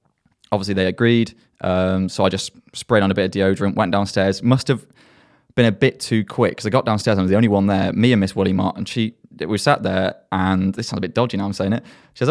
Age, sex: 20-39, male